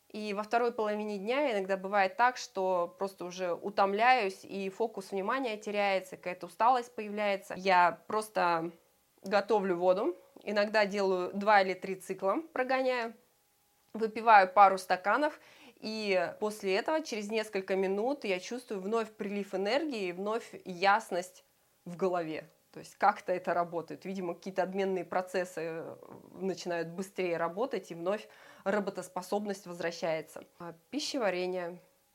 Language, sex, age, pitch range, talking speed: Russian, female, 20-39, 175-210 Hz, 120 wpm